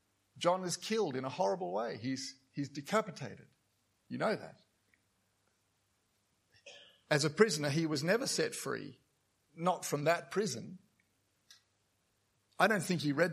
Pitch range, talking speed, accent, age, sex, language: 150-200 Hz, 135 wpm, Australian, 50-69, male, English